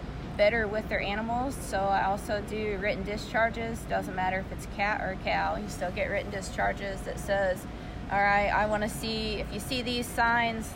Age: 20-39